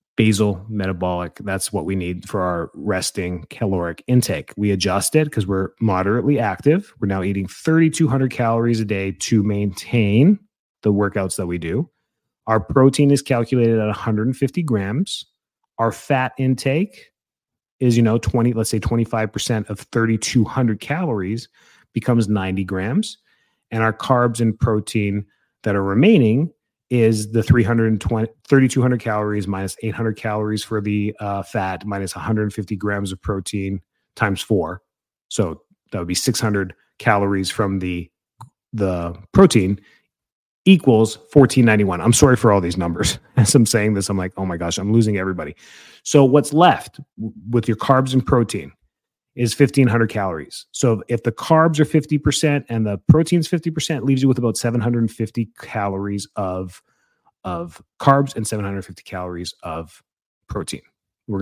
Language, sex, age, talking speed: English, male, 30-49, 145 wpm